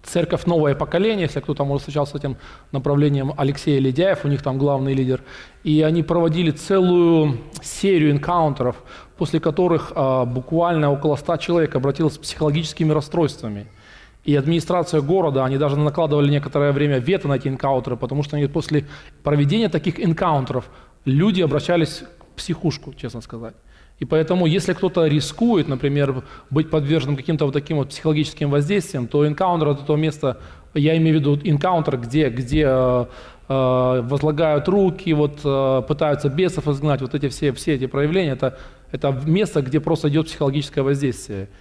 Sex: male